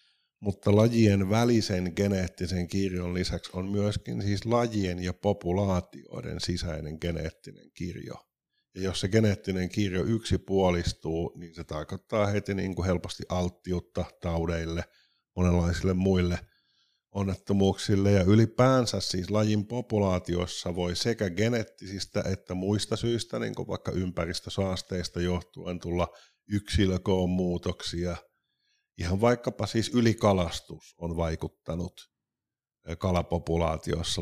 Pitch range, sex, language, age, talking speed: 85-105 Hz, male, Finnish, 50-69, 100 wpm